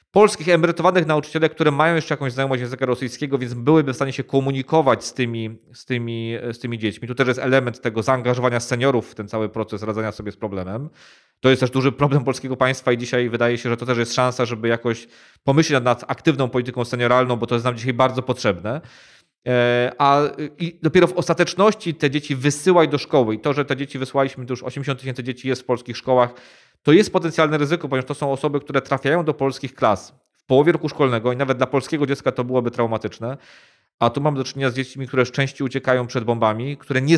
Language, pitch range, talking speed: Polish, 120-145 Hz, 210 wpm